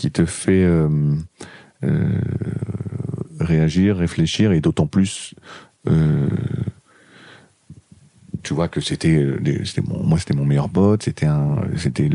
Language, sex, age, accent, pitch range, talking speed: French, male, 40-59, French, 75-100 Hz, 125 wpm